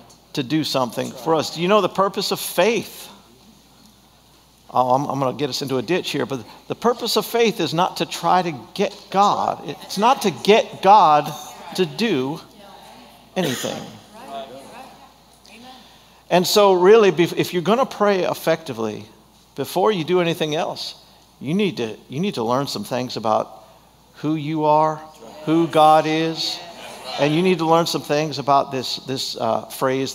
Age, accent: 50-69, American